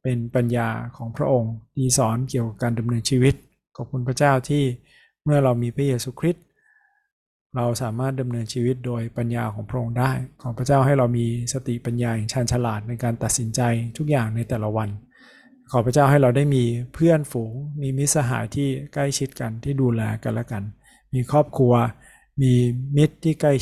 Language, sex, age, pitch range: Thai, male, 20-39, 120-140 Hz